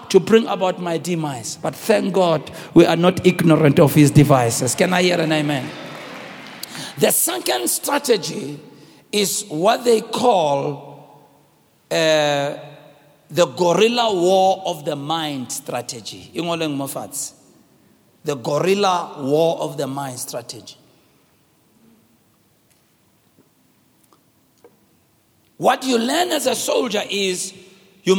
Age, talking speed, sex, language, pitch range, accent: 60-79, 105 wpm, male, English, 160-255 Hz, South African